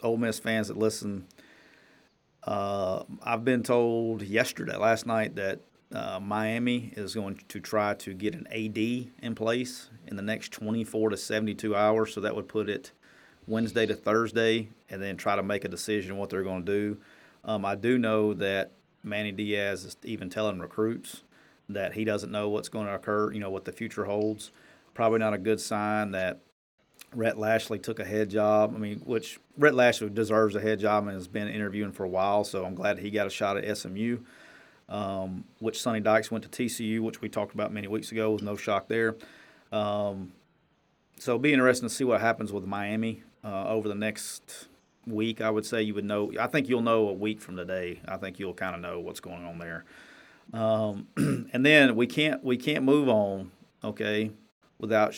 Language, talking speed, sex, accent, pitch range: English, 200 wpm, male, American, 100-115 Hz